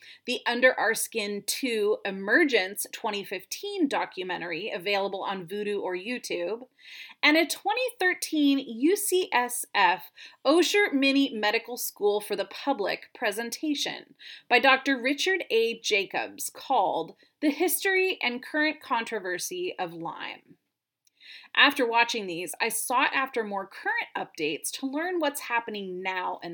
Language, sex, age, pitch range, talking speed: English, female, 30-49, 210-335 Hz, 120 wpm